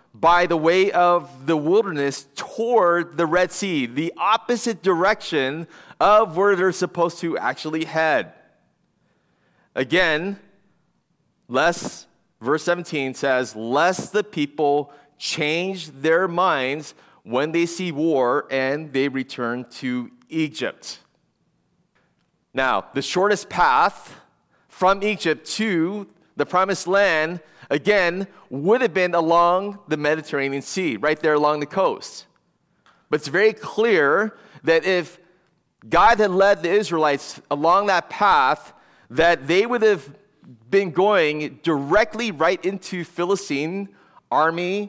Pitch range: 150-200 Hz